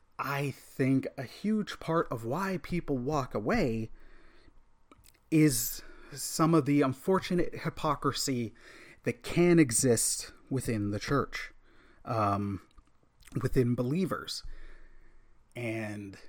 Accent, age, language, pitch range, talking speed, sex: American, 30-49, English, 115-160 Hz, 95 wpm, male